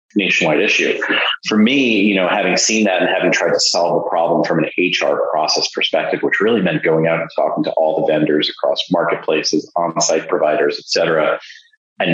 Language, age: English, 30-49